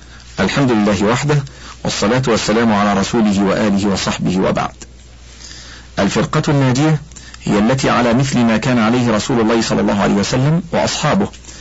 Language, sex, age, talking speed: Arabic, male, 50-69, 135 wpm